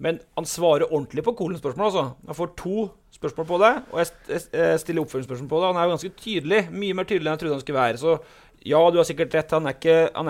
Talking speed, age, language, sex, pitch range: 255 wpm, 30-49, English, male, 145-175 Hz